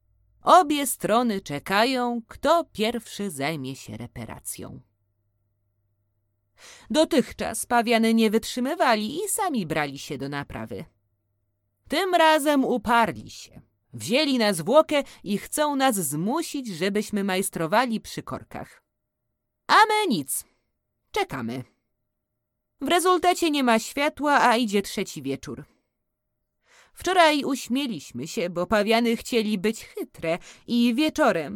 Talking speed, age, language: 105 wpm, 30-49, Polish